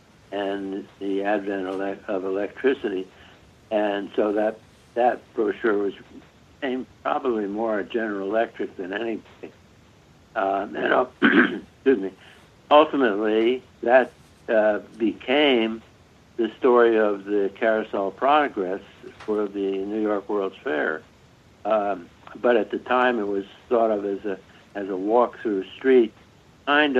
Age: 60-79